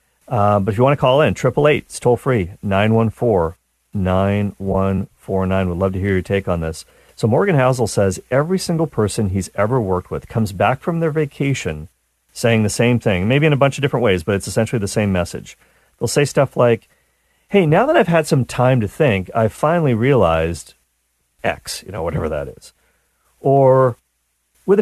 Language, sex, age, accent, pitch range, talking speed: English, male, 40-59, American, 90-150 Hz, 190 wpm